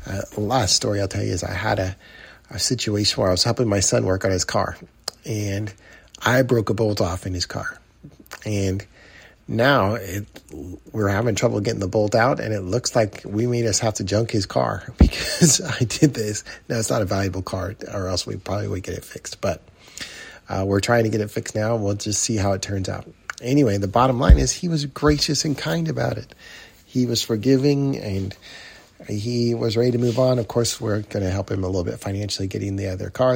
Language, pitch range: English, 95-115 Hz